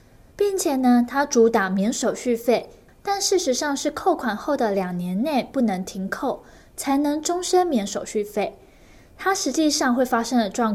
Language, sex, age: Chinese, female, 20-39